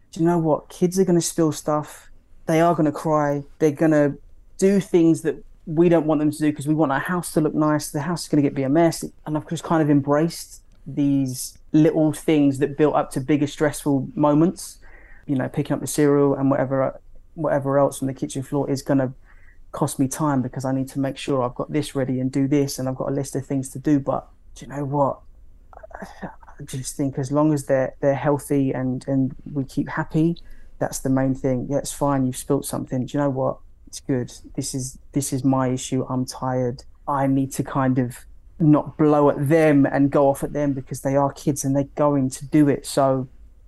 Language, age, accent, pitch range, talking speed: English, 20-39, British, 130-150 Hz, 235 wpm